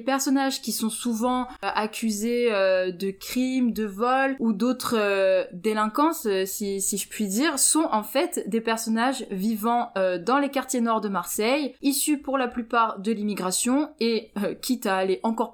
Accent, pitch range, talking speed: French, 210-255 Hz, 180 wpm